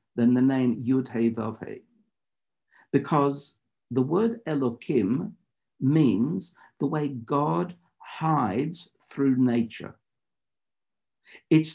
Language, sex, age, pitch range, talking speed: English, male, 60-79, 115-150 Hz, 80 wpm